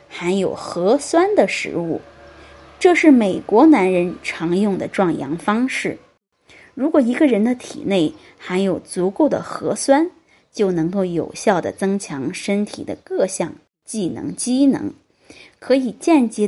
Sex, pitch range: female, 180-300 Hz